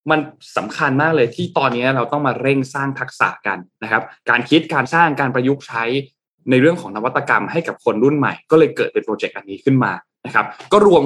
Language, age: Thai, 20-39